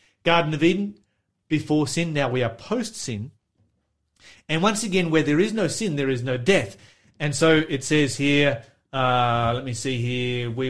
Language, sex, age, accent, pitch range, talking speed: English, male, 30-49, Australian, 125-150 Hz, 180 wpm